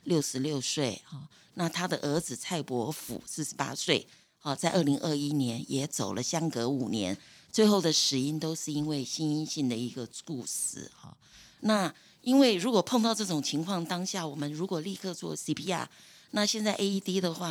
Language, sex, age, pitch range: Chinese, female, 50-69, 145-190 Hz